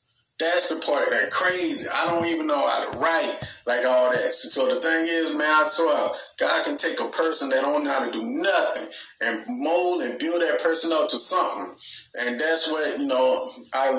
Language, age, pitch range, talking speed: English, 30-49, 135-205 Hz, 220 wpm